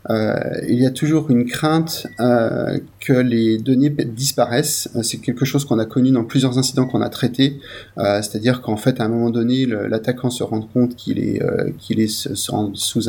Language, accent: French, French